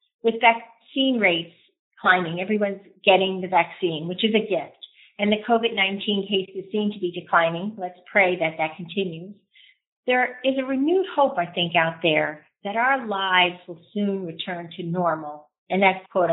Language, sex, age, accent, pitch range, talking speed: English, female, 40-59, American, 180-230 Hz, 165 wpm